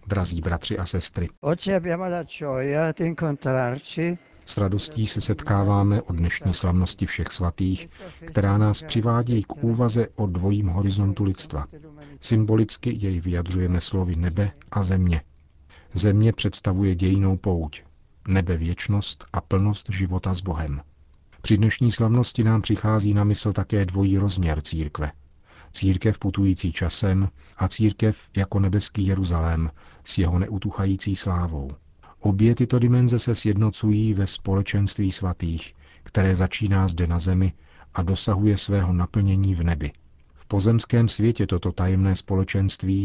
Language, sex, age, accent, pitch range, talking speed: Czech, male, 50-69, native, 85-105 Hz, 125 wpm